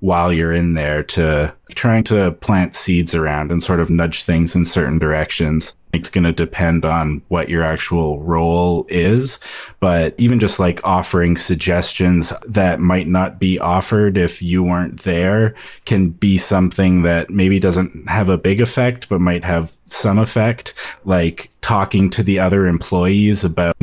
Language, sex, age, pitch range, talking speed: English, male, 20-39, 85-95 Hz, 165 wpm